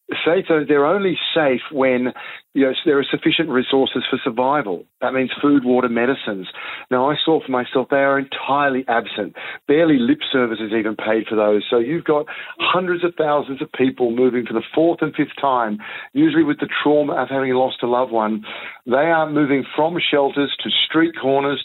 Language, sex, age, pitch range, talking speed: English, male, 50-69, 120-145 Hz, 180 wpm